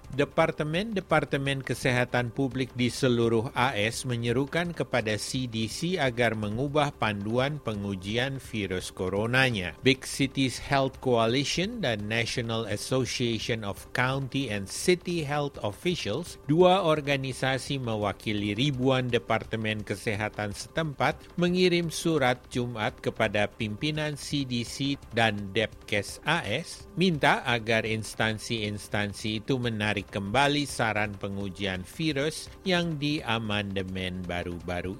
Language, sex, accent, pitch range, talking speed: Indonesian, male, native, 105-145 Hz, 95 wpm